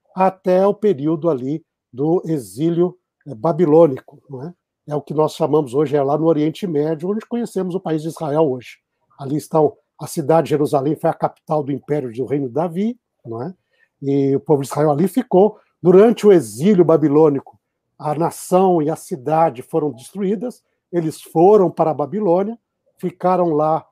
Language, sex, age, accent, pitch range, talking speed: Portuguese, male, 60-79, Brazilian, 150-195 Hz, 170 wpm